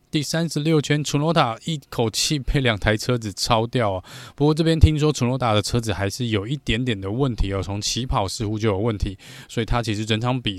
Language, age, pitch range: Chinese, 20-39, 105-145 Hz